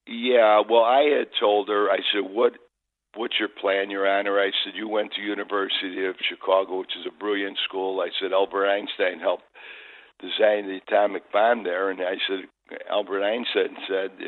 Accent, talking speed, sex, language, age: American, 180 wpm, male, English, 60-79